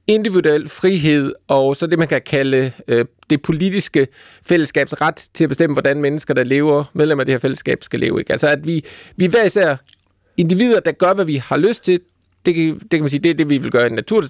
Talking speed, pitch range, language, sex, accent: 230 wpm, 140-175 Hz, Danish, male, native